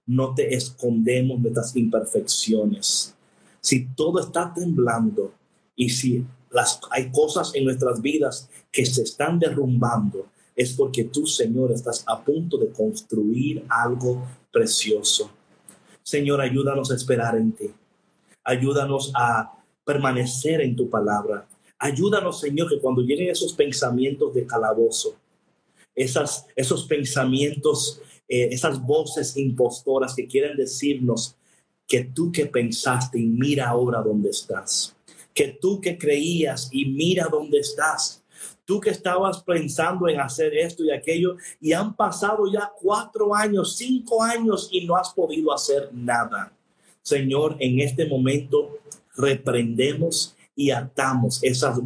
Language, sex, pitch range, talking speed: Spanish, male, 125-180 Hz, 130 wpm